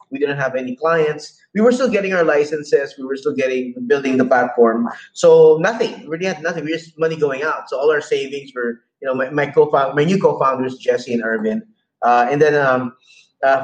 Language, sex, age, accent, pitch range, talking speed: English, male, 20-39, Filipino, 140-220 Hz, 225 wpm